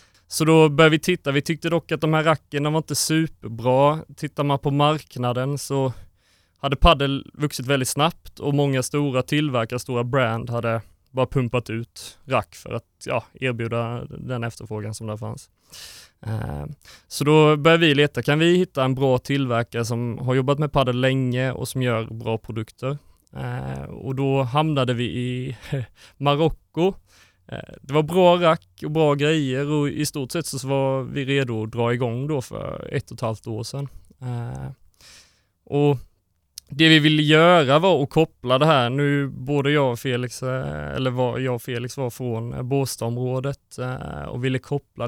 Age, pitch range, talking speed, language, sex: 20-39, 115-145 Hz, 165 wpm, Swedish, male